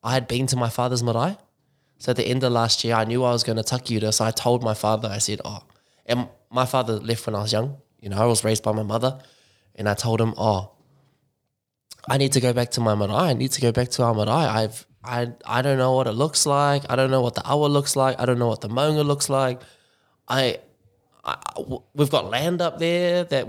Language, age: English, 20-39